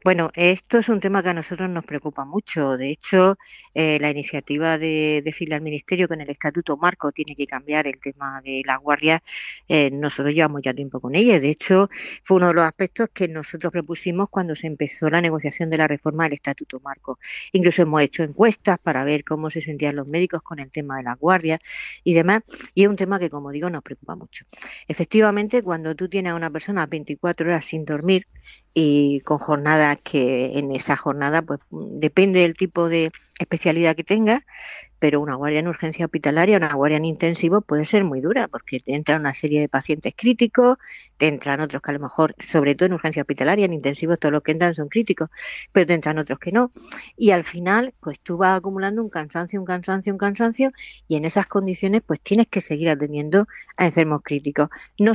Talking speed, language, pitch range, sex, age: 205 wpm, Spanish, 150-190 Hz, female, 50-69